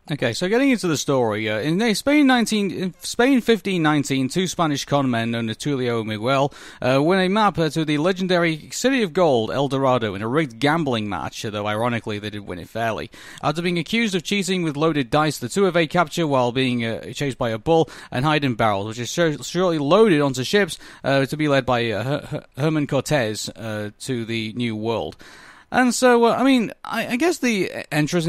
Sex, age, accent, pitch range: male, 30-49, British, 120-175 Hz